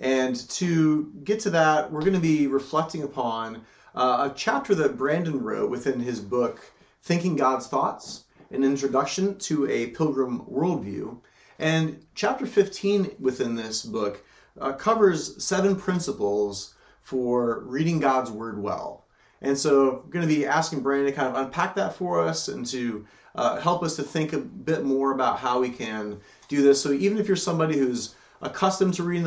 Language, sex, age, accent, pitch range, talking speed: English, male, 30-49, American, 125-160 Hz, 170 wpm